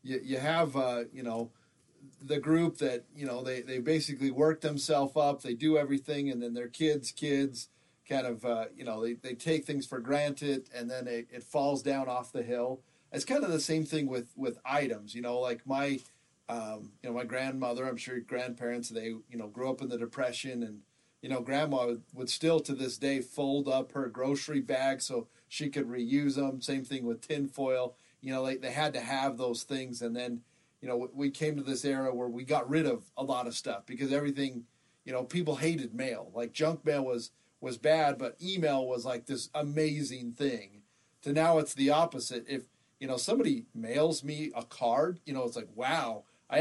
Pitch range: 120-145 Hz